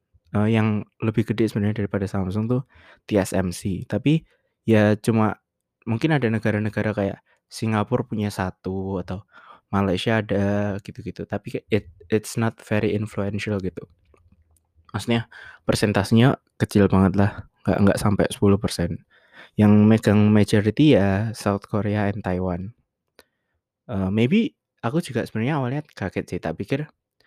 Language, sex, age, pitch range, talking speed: Indonesian, male, 20-39, 100-115 Hz, 125 wpm